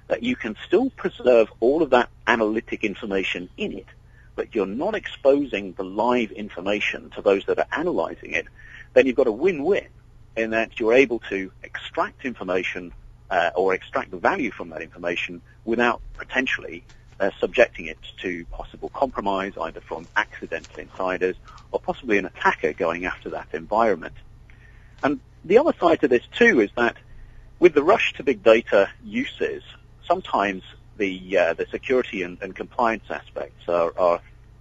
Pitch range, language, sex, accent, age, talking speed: 100-135 Hz, English, male, British, 40-59, 155 wpm